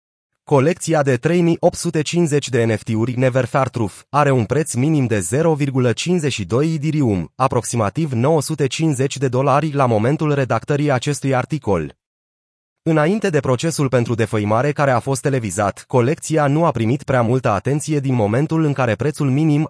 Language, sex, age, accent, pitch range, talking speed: Romanian, male, 30-49, native, 115-150 Hz, 135 wpm